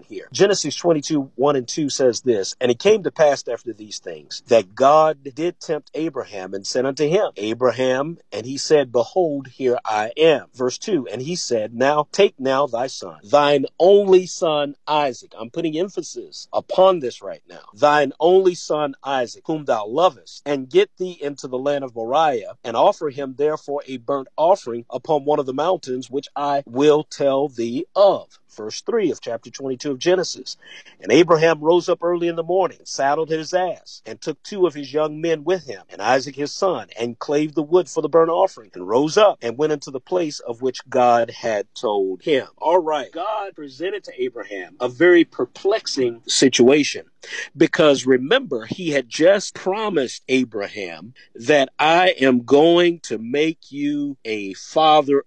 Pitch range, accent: 135-180 Hz, American